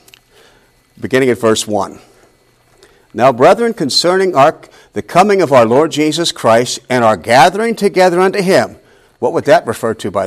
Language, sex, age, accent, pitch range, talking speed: English, male, 50-69, American, 125-185 Hz, 160 wpm